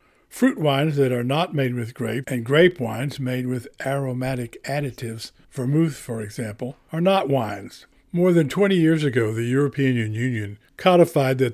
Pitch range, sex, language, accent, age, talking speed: 125-150 Hz, male, English, American, 60-79, 160 wpm